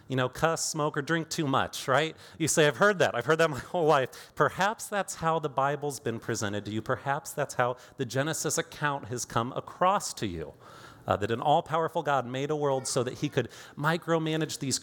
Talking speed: 220 wpm